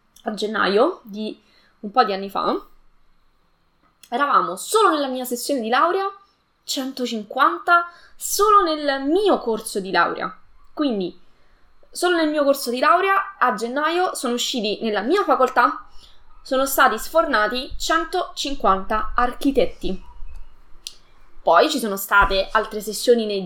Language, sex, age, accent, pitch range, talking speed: Italian, female, 20-39, native, 200-285 Hz, 125 wpm